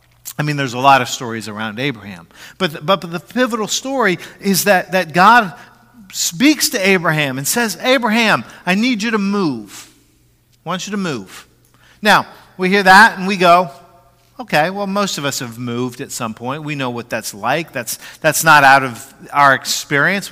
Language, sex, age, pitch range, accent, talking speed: English, male, 50-69, 125-200 Hz, American, 190 wpm